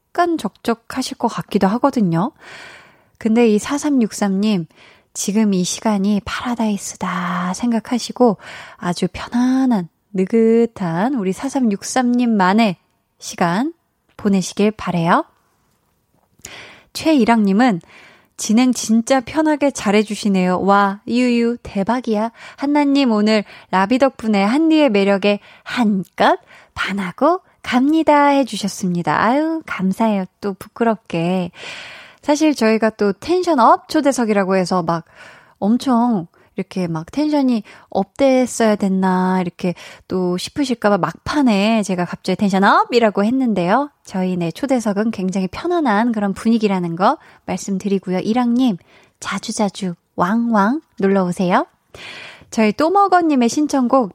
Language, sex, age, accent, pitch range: Korean, female, 20-39, native, 190-255 Hz